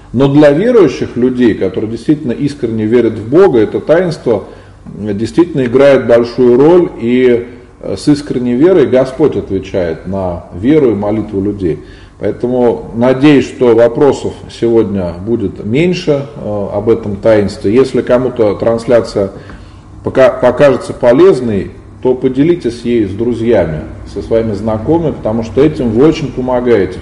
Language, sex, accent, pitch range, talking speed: Russian, male, native, 100-130 Hz, 125 wpm